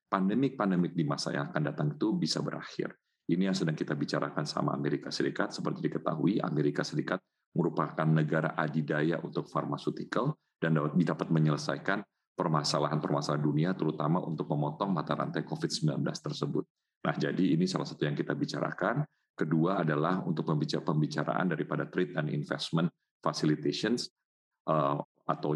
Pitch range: 75-90 Hz